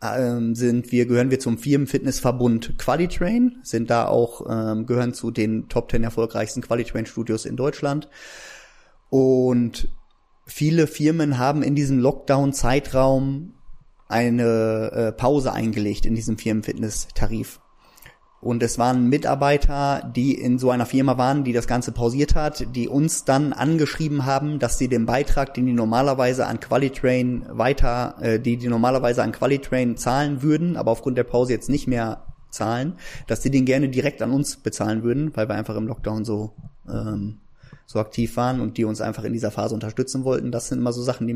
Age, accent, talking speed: 30-49, German, 165 wpm